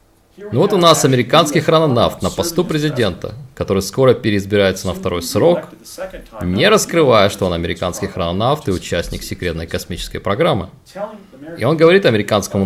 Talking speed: 140 wpm